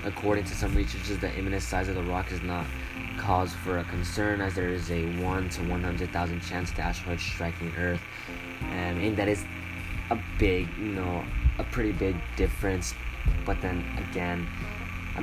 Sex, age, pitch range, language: male, 10-29, 85-95 Hz, English